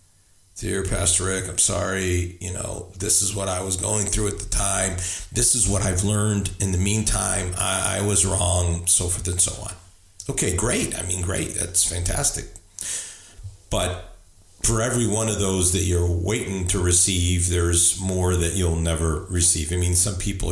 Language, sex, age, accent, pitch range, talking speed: English, male, 50-69, American, 90-105 Hz, 180 wpm